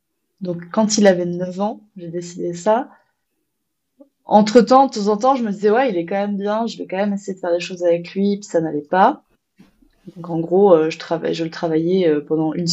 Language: French